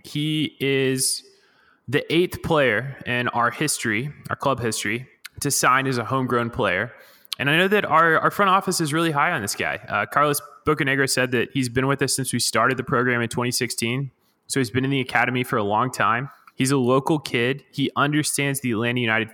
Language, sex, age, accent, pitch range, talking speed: English, male, 20-39, American, 120-145 Hz, 205 wpm